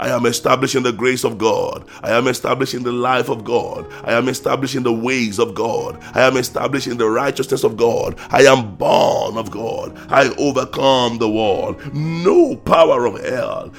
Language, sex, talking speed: English, male, 180 wpm